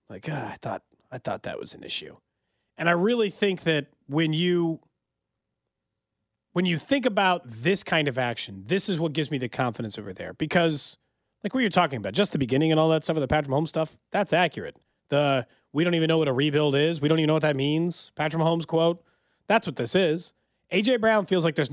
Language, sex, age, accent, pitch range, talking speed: English, male, 30-49, American, 135-185 Hz, 225 wpm